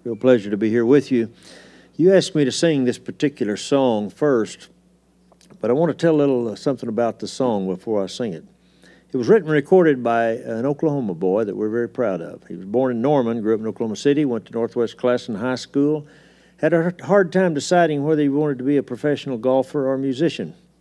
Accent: American